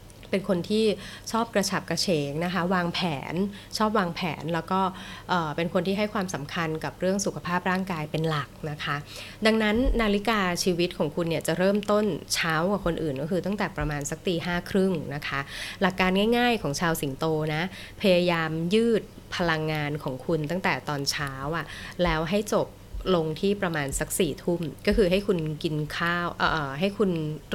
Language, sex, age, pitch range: Thai, female, 20-39, 150-190 Hz